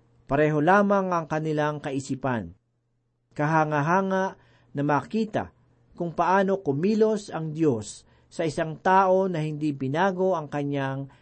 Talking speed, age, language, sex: 110 wpm, 50-69, Filipino, male